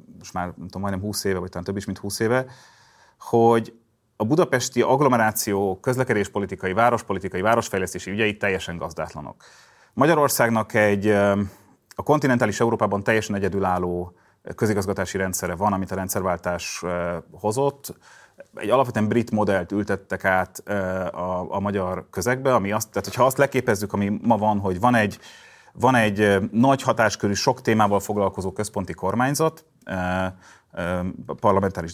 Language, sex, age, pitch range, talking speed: Hungarian, male, 30-49, 95-115 Hz, 130 wpm